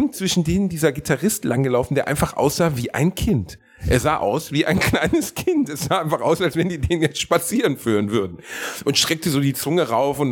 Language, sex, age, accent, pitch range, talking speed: German, male, 40-59, German, 120-165 Hz, 215 wpm